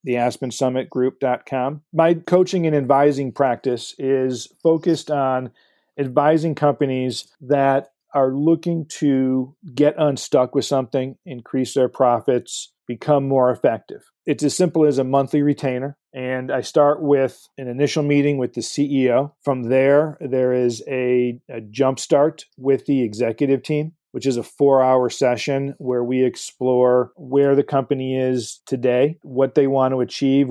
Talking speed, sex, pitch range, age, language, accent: 140 wpm, male, 125-145 Hz, 40-59, English, American